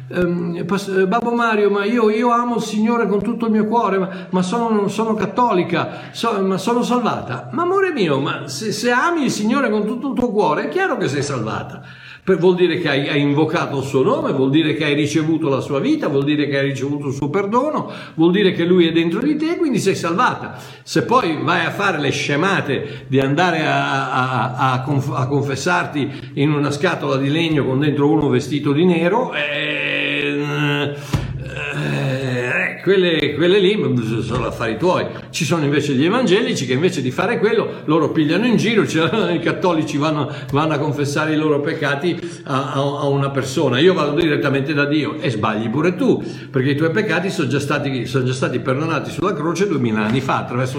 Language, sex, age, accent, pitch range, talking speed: Italian, male, 60-79, native, 140-190 Hz, 200 wpm